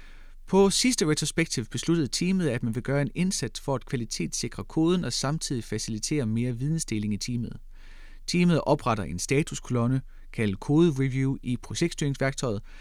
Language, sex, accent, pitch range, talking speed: Danish, male, native, 110-155 Hz, 145 wpm